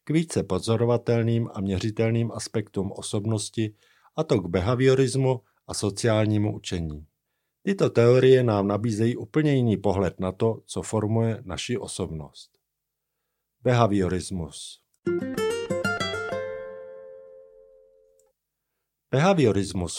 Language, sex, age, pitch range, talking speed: Czech, male, 50-69, 95-120 Hz, 85 wpm